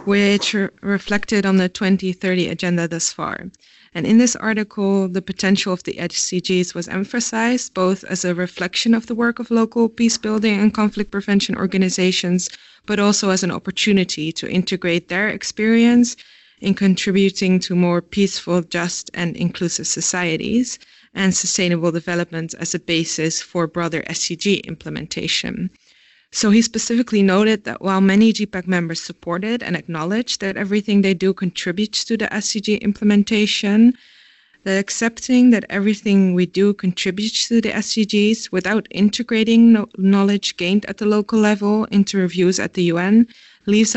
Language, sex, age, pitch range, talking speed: English, female, 20-39, 180-215 Hz, 145 wpm